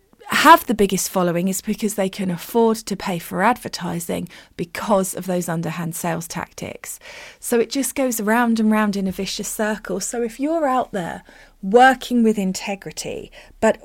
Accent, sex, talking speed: British, female, 170 wpm